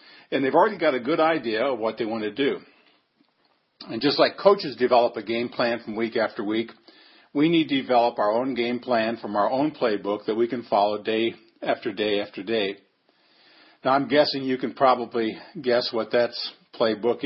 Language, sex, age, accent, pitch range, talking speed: English, male, 50-69, American, 115-130 Hz, 195 wpm